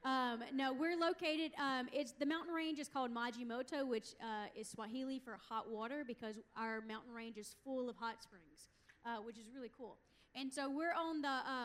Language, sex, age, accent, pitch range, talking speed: English, female, 30-49, American, 225-275 Hz, 200 wpm